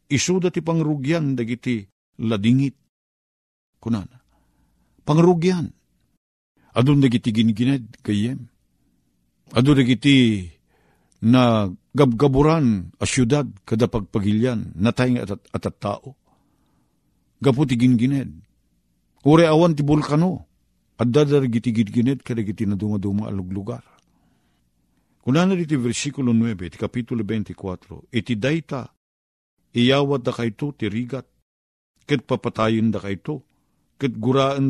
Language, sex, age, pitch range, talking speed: Filipino, male, 50-69, 95-130 Hz, 90 wpm